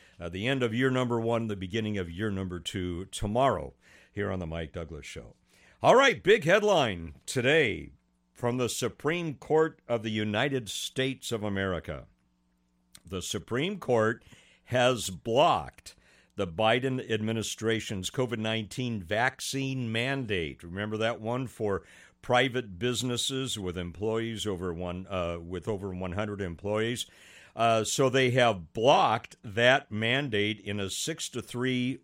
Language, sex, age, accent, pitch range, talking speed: English, male, 60-79, American, 95-120 Hz, 135 wpm